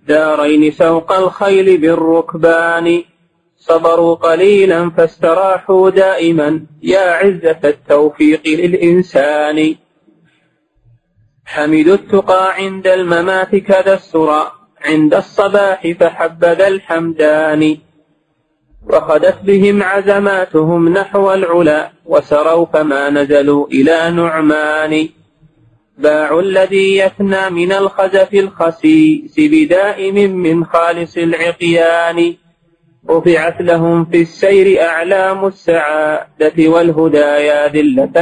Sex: male